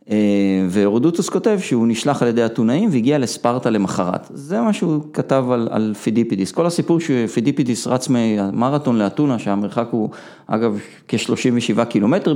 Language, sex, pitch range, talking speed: Hebrew, male, 105-125 Hz, 135 wpm